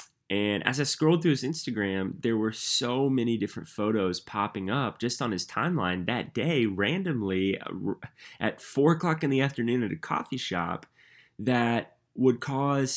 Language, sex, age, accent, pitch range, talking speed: English, male, 20-39, American, 95-120 Hz, 160 wpm